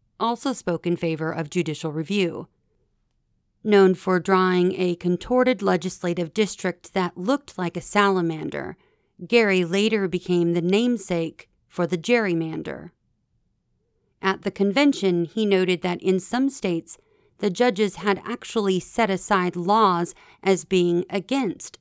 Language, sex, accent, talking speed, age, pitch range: English, female, American, 125 wpm, 40-59, 175-210 Hz